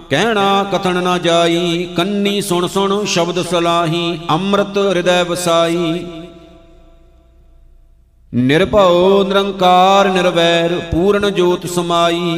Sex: male